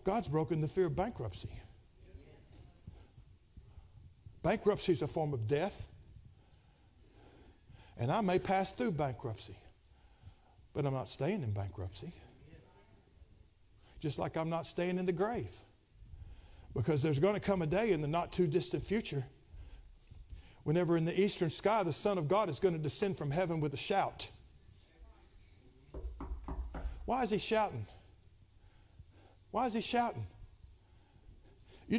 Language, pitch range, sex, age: English, 95-155 Hz, male, 50-69